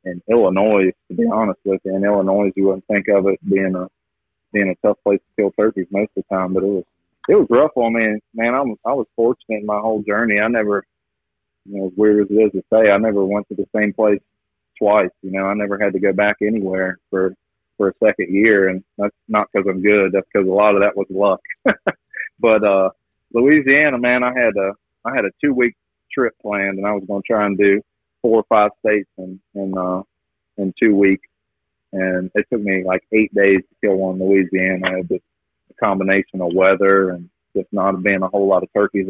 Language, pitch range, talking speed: English, 95-105 Hz, 235 wpm